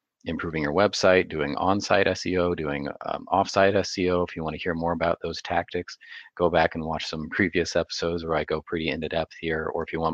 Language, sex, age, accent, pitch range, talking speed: English, male, 30-49, American, 75-90 Hz, 220 wpm